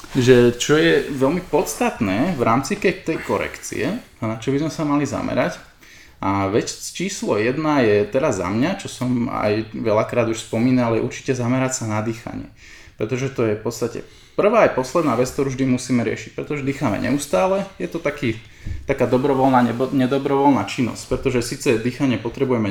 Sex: male